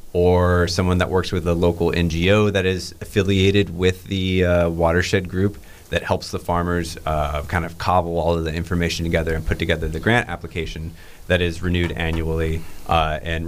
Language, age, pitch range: English, 30-49, 85-95 Hz